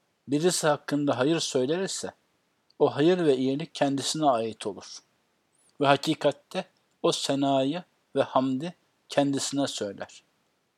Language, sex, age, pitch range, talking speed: Turkish, male, 60-79, 140-170 Hz, 105 wpm